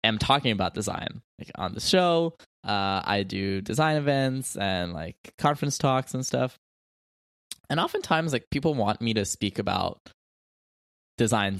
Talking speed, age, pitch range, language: 150 wpm, 20-39, 100-135 Hz, English